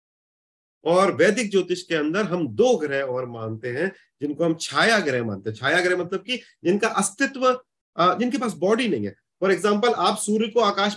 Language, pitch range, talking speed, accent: Hindi, 130-195 Hz, 185 wpm, native